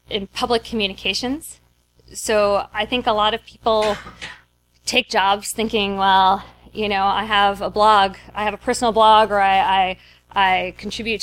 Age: 20-39